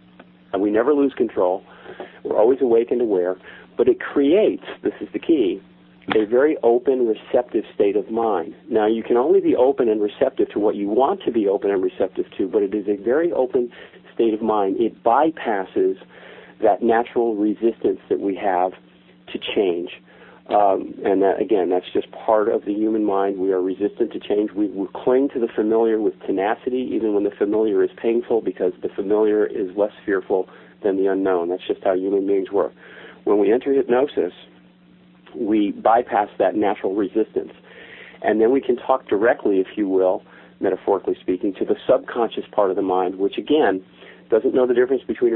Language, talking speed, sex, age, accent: English, 185 wpm, male, 50-69, American